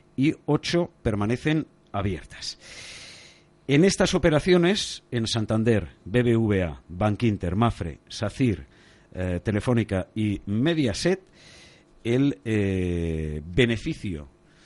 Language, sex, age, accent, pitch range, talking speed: Spanish, male, 50-69, Spanish, 100-155 Hz, 85 wpm